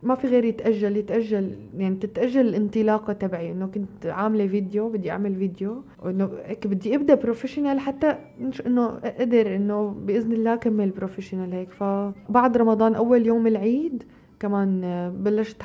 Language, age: Arabic, 20-39